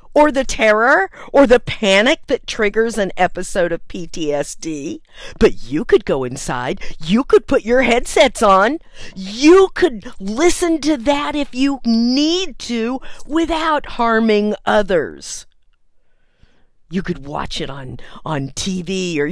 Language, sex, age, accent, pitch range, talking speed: English, female, 50-69, American, 155-230 Hz, 135 wpm